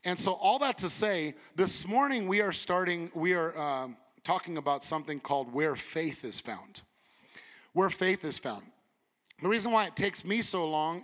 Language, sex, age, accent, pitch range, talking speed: English, male, 30-49, American, 165-215 Hz, 185 wpm